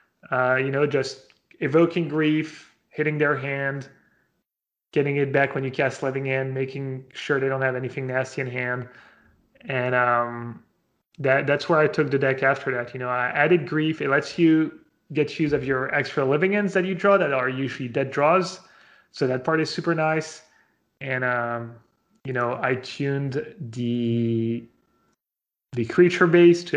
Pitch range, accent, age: 130-155 Hz, Canadian, 30-49